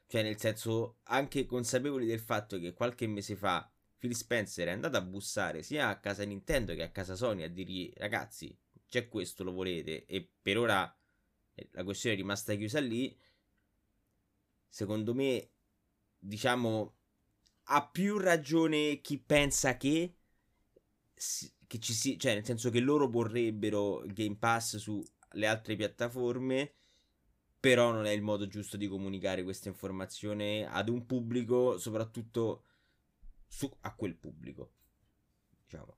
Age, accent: 20-39, native